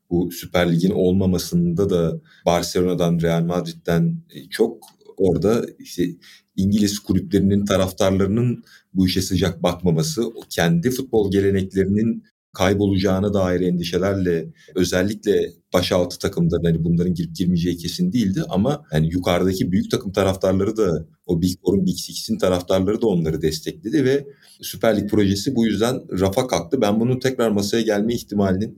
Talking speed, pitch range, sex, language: 130 wpm, 85-110 Hz, male, Turkish